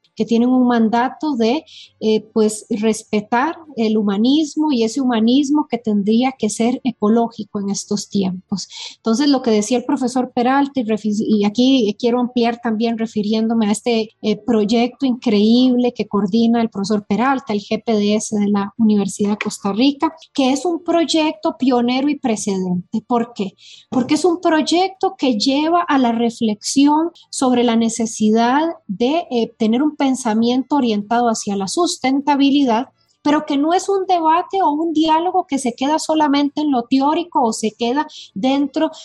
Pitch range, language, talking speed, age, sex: 215-280 Hz, Portuguese, 160 wpm, 30-49, female